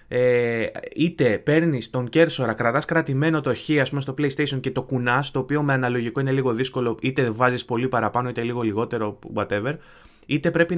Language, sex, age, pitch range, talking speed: Greek, male, 20-39, 120-150 Hz, 165 wpm